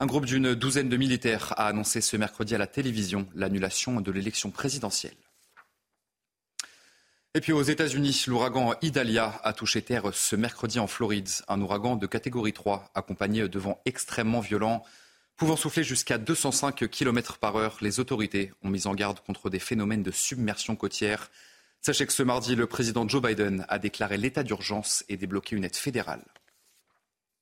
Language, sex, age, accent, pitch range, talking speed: French, male, 30-49, French, 105-130 Hz, 170 wpm